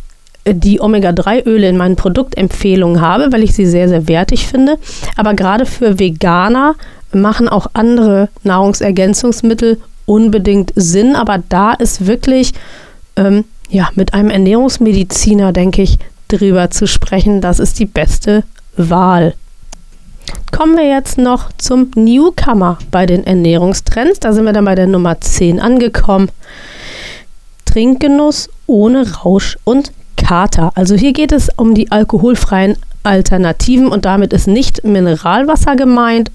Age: 30-49